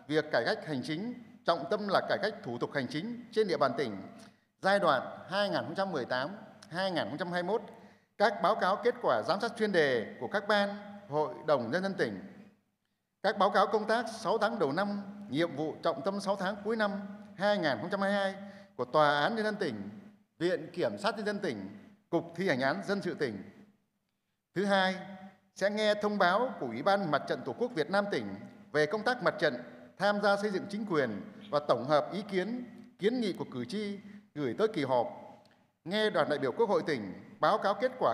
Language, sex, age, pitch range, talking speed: Vietnamese, male, 60-79, 185-215 Hz, 200 wpm